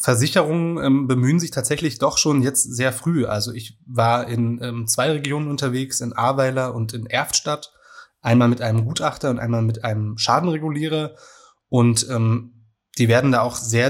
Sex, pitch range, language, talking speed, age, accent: male, 115-135 Hz, German, 170 wpm, 20-39, German